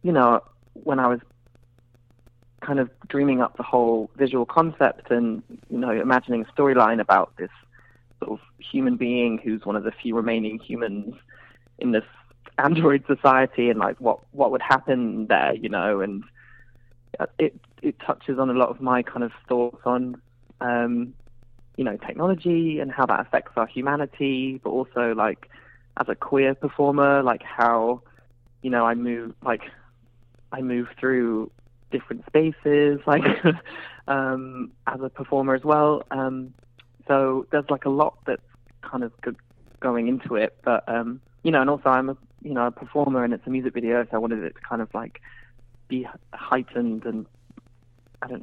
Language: English